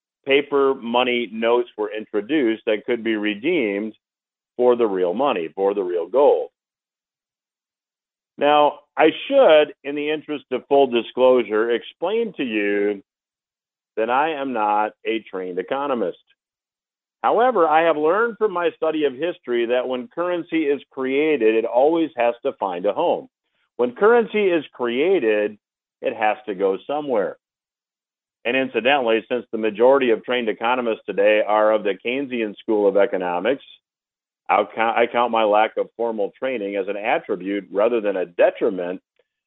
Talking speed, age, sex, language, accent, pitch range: 145 wpm, 50-69, male, English, American, 110-160 Hz